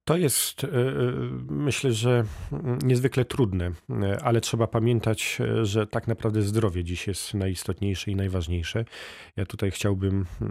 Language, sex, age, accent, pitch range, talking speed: Polish, male, 40-59, native, 90-105 Hz, 120 wpm